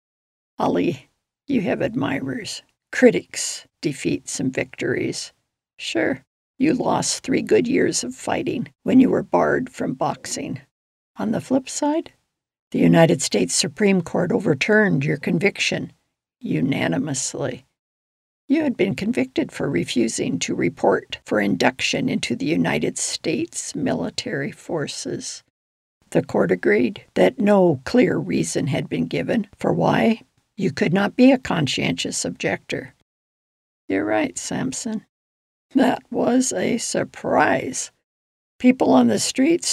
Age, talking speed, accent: 60-79, 120 wpm, American